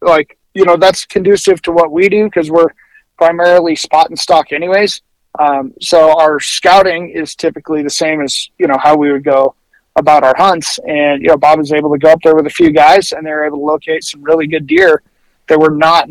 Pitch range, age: 150-185 Hz, 30-49